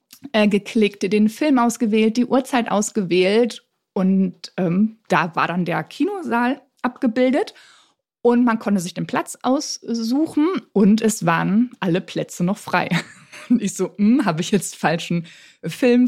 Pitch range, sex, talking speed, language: 185-245 Hz, female, 135 wpm, German